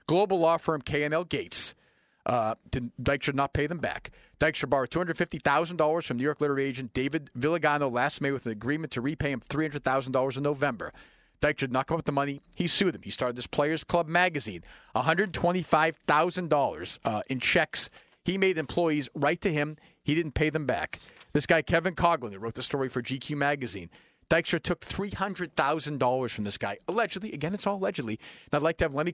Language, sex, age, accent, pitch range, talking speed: English, male, 40-59, American, 135-170 Hz, 185 wpm